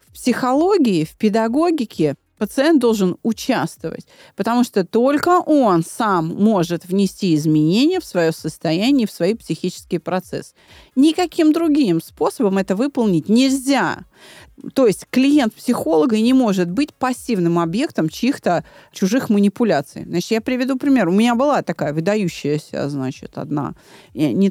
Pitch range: 170-235 Hz